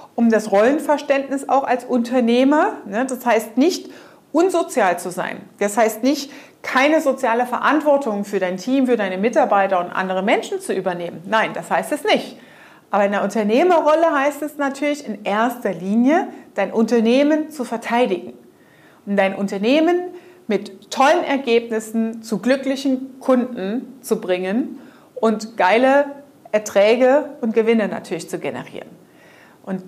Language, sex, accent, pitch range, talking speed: German, female, German, 205-275 Hz, 135 wpm